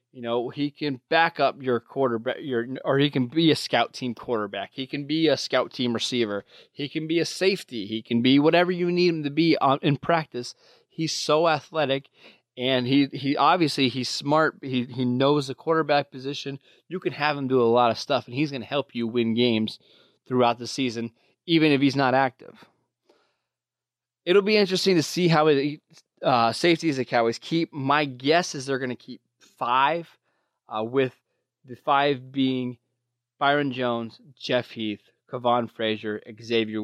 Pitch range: 120-145 Hz